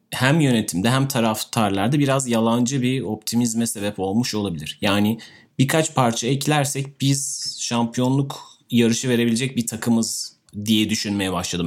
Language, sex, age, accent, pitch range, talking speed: Turkish, male, 30-49, native, 105-135 Hz, 125 wpm